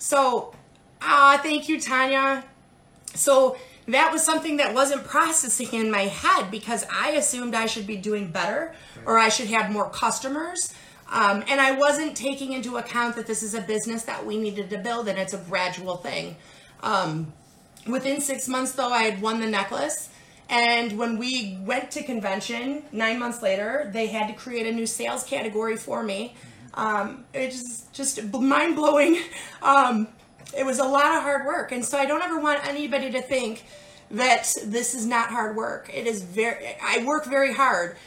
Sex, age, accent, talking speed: female, 30-49, American, 180 wpm